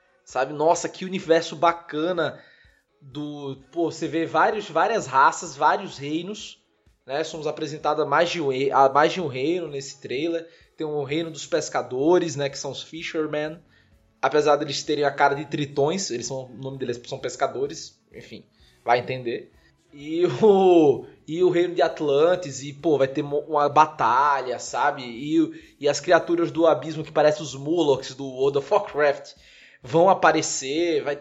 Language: Portuguese